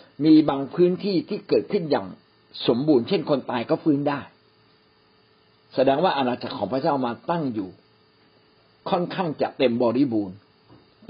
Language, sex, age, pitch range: Thai, male, 60-79, 125-180 Hz